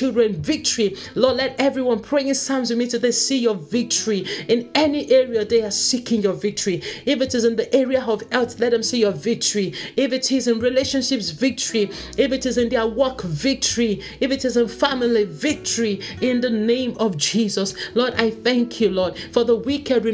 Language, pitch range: English, 185-240 Hz